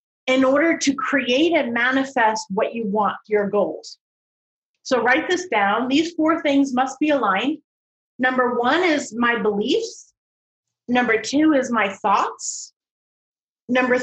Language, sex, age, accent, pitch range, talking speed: English, female, 30-49, American, 215-285 Hz, 135 wpm